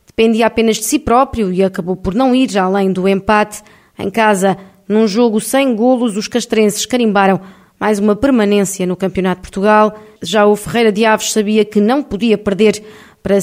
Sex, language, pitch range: female, Portuguese, 195-225 Hz